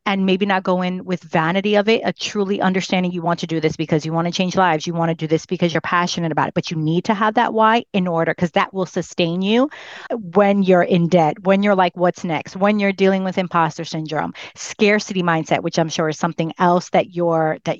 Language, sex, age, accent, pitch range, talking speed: English, female, 30-49, American, 170-200 Hz, 245 wpm